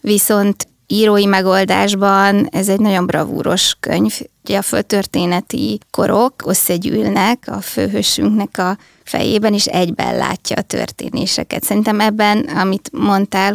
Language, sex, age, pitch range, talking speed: Hungarian, female, 20-39, 190-210 Hz, 115 wpm